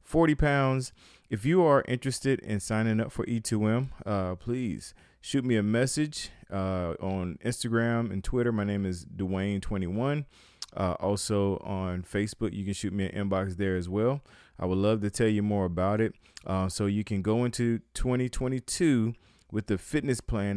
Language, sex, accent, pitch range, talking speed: English, male, American, 95-115 Hz, 170 wpm